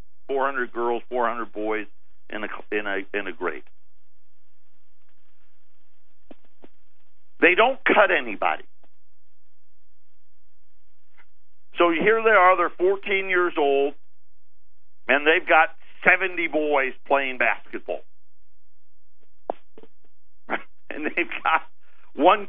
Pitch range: 120-180 Hz